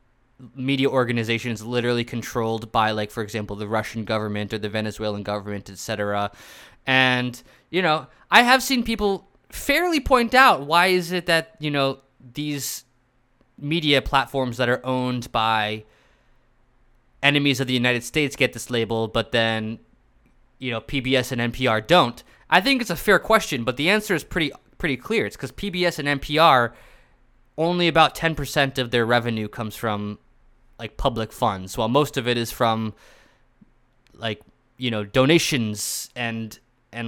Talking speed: 155 wpm